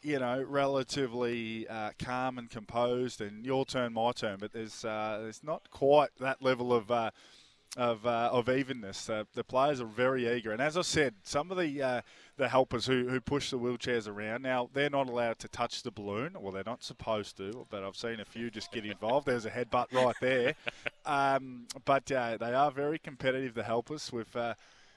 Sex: male